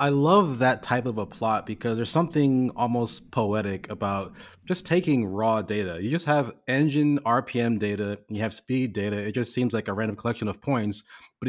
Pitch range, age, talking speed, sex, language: 100-125 Hz, 30-49, 195 wpm, male, English